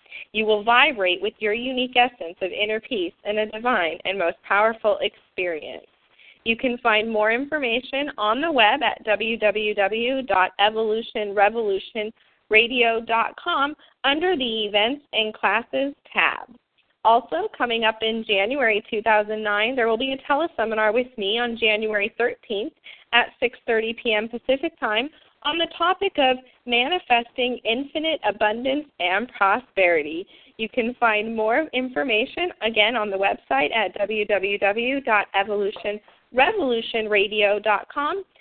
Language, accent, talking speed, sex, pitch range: English, American, 115 wpm, female, 210-270 Hz